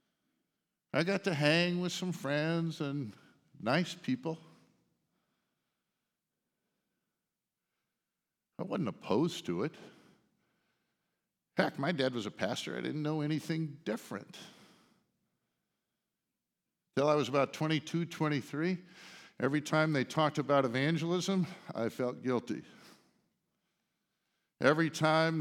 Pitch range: 135-180 Hz